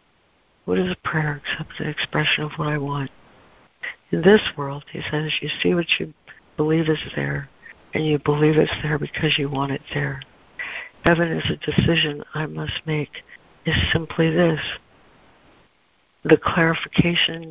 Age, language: 60-79, English